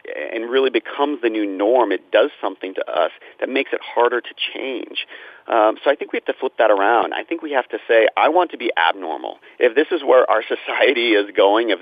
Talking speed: 240 wpm